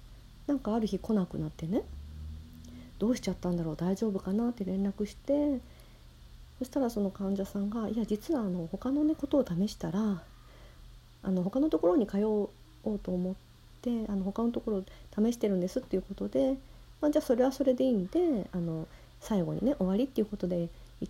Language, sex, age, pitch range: Japanese, female, 40-59, 160-235 Hz